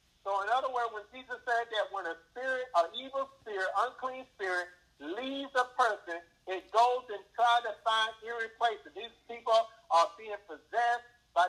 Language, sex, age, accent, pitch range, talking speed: English, male, 50-69, American, 180-240 Hz, 165 wpm